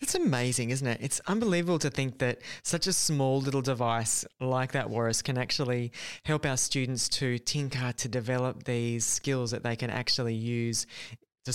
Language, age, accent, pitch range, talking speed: English, 20-39, Australian, 120-165 Hz, 175 wpm